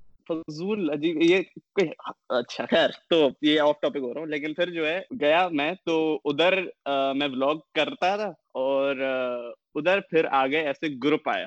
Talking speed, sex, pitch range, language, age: 70 wpm, male, 140-175 Hz, Urdu, 20-39